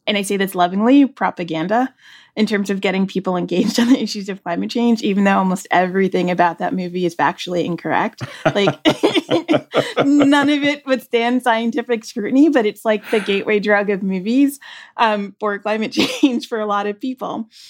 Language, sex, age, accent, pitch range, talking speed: English, female, 20-39, American, 180-225 Hz, 175 wpm